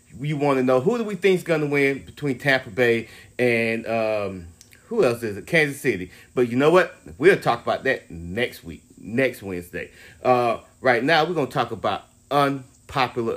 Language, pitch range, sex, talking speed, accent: English, 115-175 Hz, male, 195 wpm, American